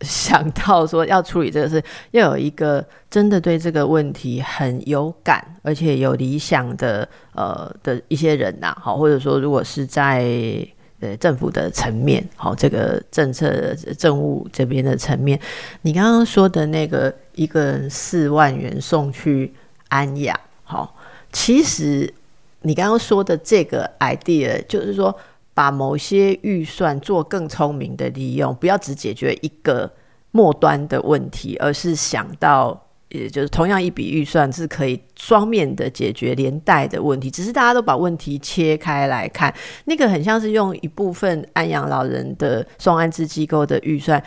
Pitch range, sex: 145-190 Hz, female